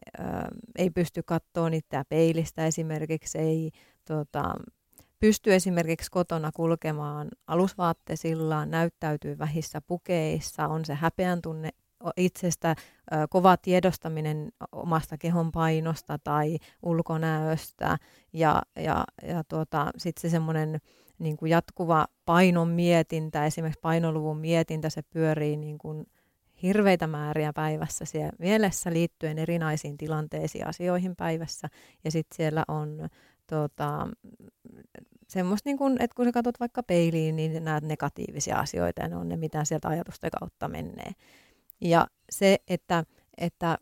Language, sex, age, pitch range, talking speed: Finnish, female, 30-49, 155-175 Hz, 115 wpm